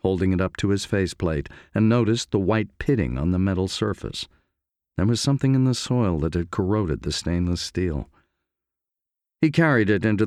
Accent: American